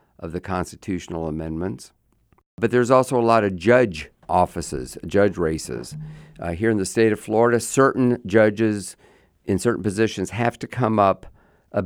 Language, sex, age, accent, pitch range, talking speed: English, male, 50-69, American, 85-105 Hz, 155 wpm